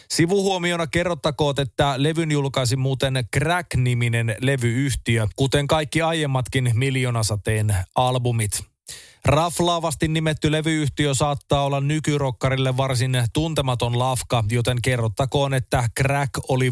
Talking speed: 95 wpm